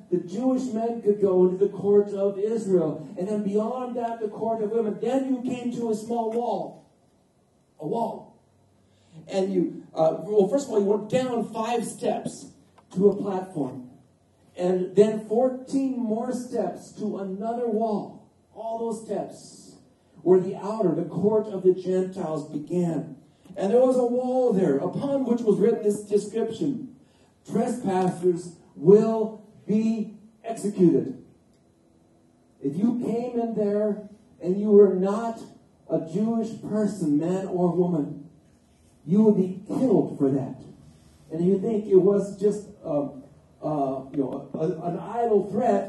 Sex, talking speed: male, 150 wpm